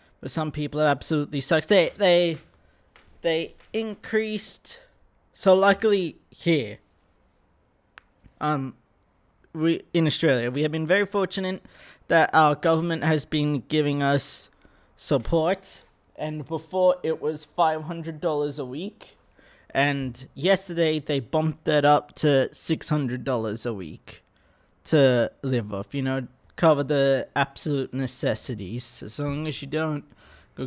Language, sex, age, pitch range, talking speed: English, male, 20-39, 130-165 Hz, 130 wpm